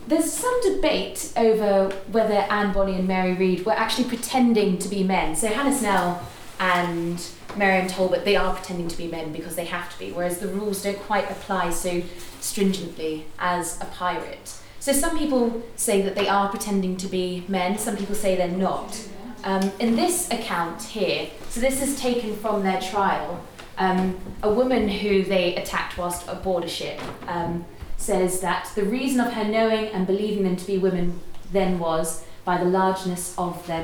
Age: 20-39